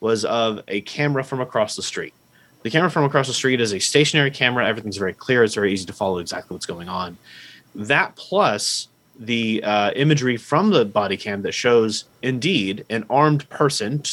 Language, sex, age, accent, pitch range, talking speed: English, male, 30-49, American, 105-135 Hz, 190 wpm